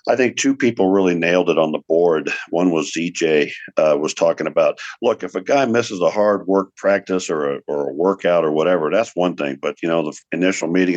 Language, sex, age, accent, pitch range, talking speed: English, male, 50-69, American, 85-100 Hz, 230 wpm